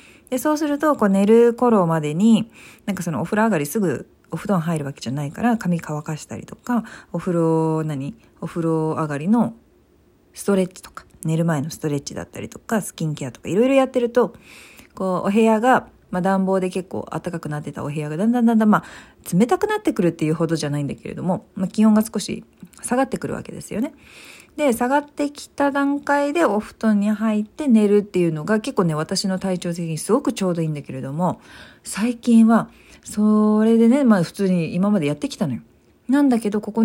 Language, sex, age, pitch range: Japanese, female, 40-59, 160-230 Hz